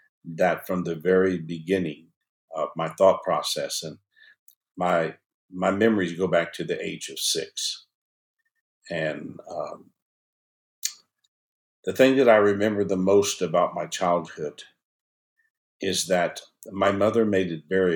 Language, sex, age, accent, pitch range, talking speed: English, male, 60-79, American, 85-105 Hz, 130 wpm